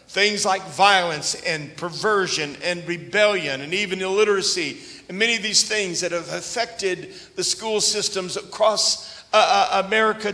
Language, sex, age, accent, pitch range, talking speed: English, male, 50-69, American, 180-220 Hz, 140 wpm